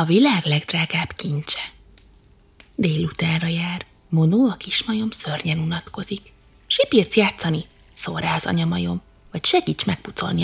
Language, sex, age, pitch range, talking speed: Hungarian, female, 20-39, 165-265 Hz, 110 wpm